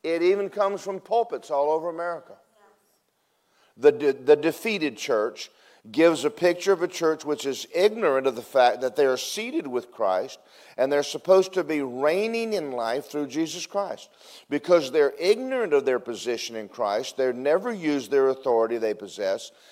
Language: English